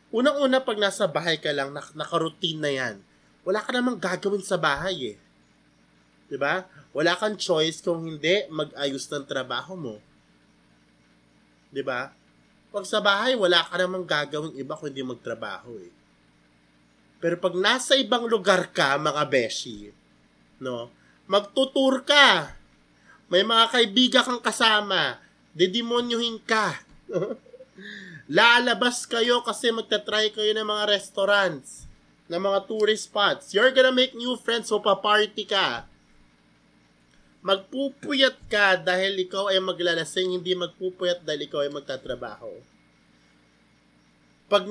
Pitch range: 145-215 Hz